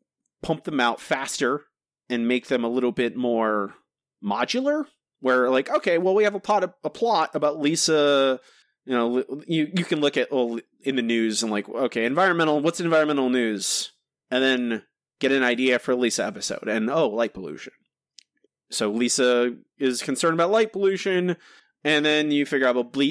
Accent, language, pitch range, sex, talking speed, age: American, English, 125-165 Hz, male, 170 wpm, 30-49